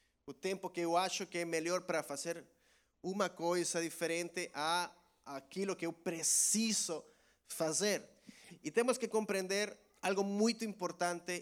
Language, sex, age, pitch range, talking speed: Portuguese, male, 30-49, 155-195 Hz, 135 wpm